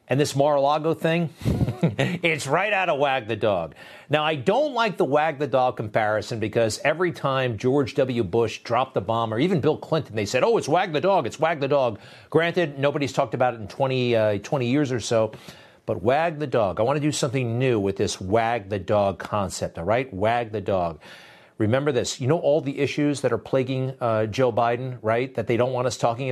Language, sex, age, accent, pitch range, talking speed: English, male, 50-69, American, 115-155 Hz, 220 wpm